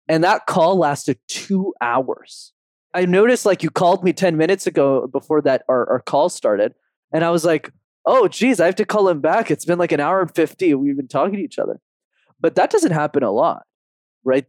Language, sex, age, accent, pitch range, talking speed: English, male, 20-39, American, 130-215 Hz, 220 wpm